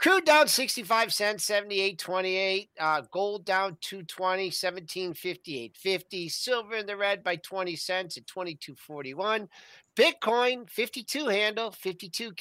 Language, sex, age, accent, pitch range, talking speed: English, male, 50-69, American, 160-225 Hz, 110 wpm